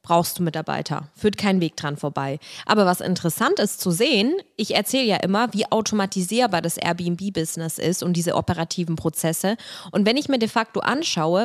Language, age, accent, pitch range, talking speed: German, 20-39, German, 170-210 Hz, 180 wpm